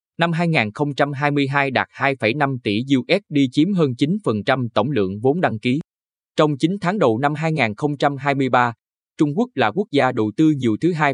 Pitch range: 115-155 Hz